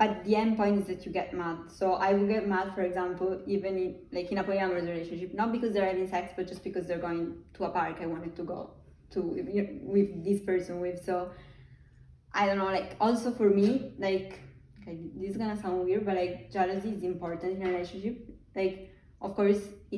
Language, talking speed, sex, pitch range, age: English, 210 wpm, female, 180-200 Hz, 20-39